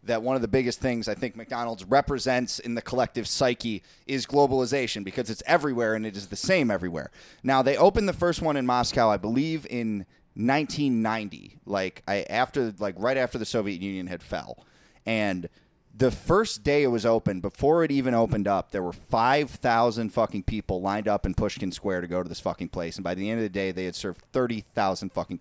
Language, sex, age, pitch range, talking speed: English, male, 30-49, 100-130 Hz, 210 wpm